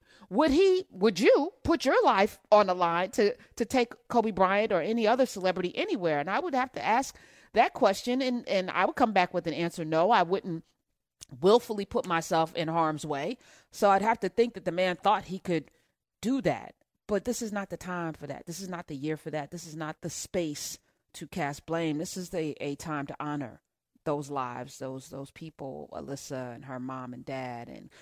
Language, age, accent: English, 40-59, American